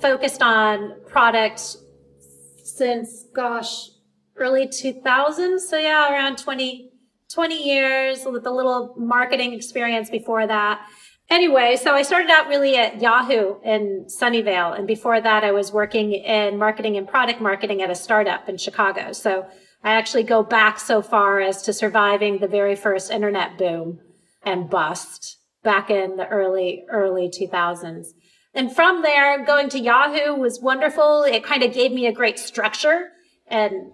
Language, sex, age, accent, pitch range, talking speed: English, female, 30-49, American, 205-255 Hz, 150 wpm